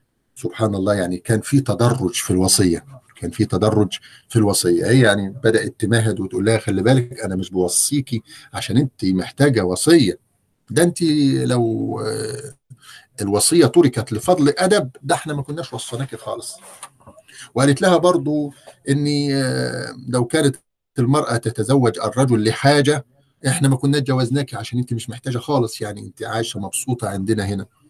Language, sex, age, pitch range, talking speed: Arabic, male, 50-69, 105-135 Hz, 140 wpm